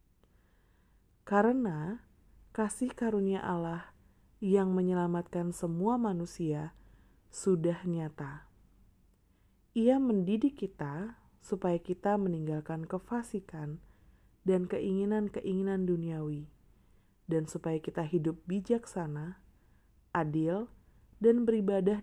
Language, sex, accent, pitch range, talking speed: Indonesian, female, native, 160-200 Hz, 75 wpm